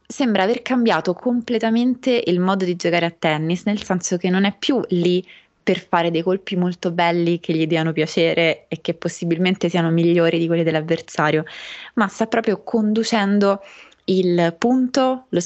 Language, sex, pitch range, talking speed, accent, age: Italian, female, 170-215 Hz, 165 wpm, native, 20-39